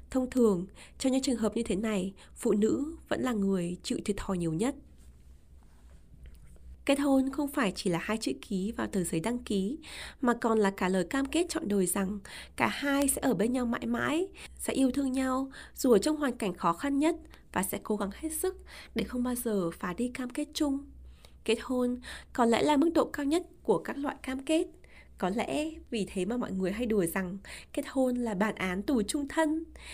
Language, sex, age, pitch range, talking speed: Vietnamese, female, 20-39, 195-275 Hz, 220 wpm